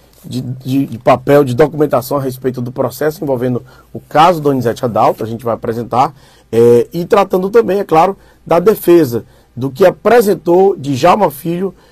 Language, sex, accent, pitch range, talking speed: Portuguese, male, Brazilian, 125-160 Hz, 165 wpm